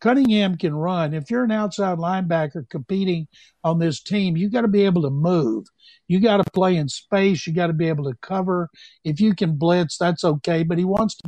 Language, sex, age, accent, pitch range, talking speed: English, male, 60-79, American, 160-195 Hz, 225 wpm